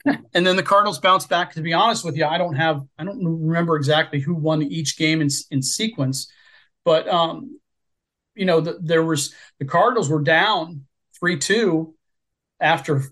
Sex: male